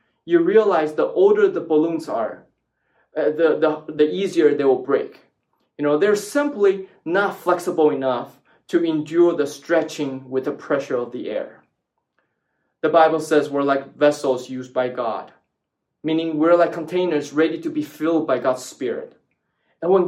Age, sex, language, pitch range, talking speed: 20-39, male, English, 150-195 Hz, 160 wpm